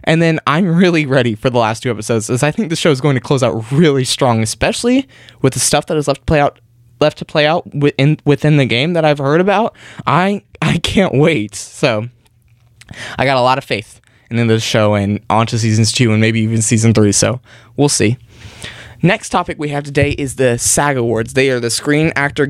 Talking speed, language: 225 wpm, English